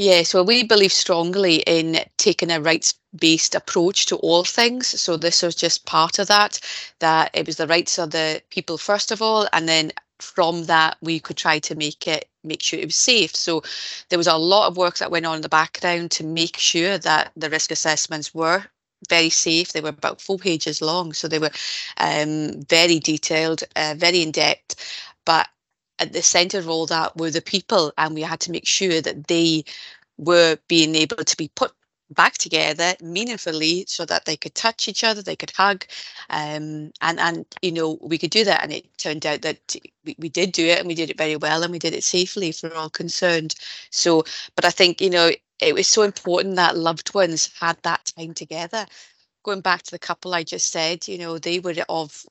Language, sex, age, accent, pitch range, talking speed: English, female, 30-49, British, 160-180 Hz, 210 wpm